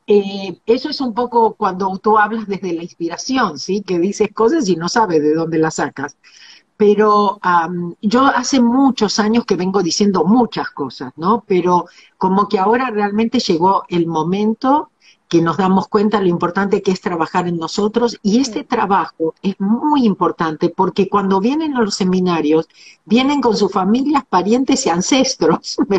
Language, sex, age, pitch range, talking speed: Spanish, female, 50-69, 185-245 Hz, 170 wpm